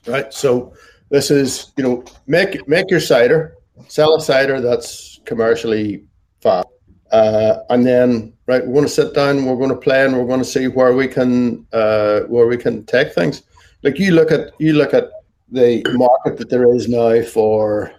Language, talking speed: English, 190 wpm